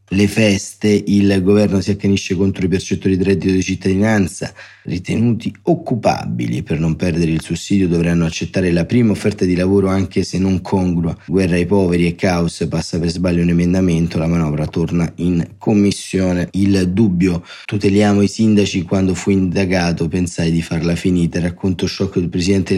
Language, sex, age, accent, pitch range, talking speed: Italian, male, 30-49, native, 85-100 Hz, 165 wpm